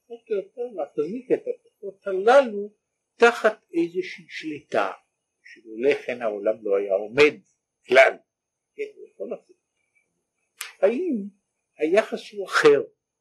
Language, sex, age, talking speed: Hebrew, male, 60-79, 85 wpm